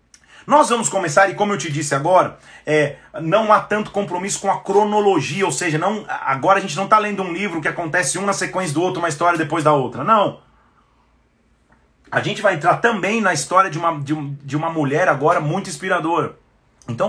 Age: 30-49